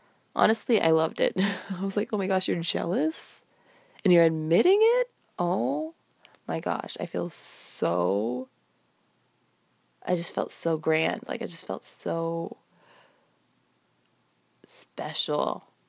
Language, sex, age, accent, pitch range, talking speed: English, female, 20-39, American, 165-215 Hz, 125 wpm